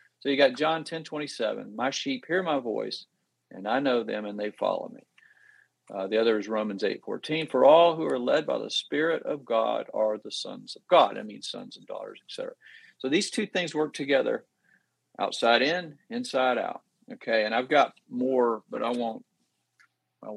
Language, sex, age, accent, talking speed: English, male, 50-69, American, 195 wpm